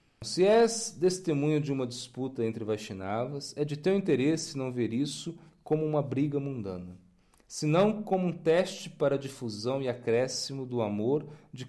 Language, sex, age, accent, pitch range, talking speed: Portuguese, male, 40-59, Brazilian, 110-150 Hz, 160 wpm